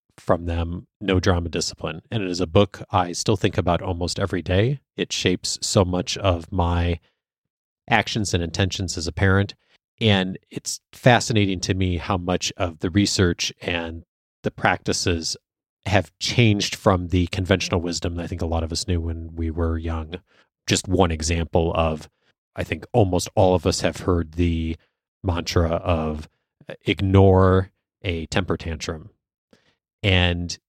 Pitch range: 85-100 Hz